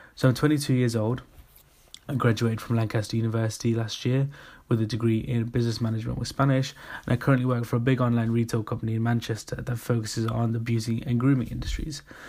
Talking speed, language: 200 wpm, English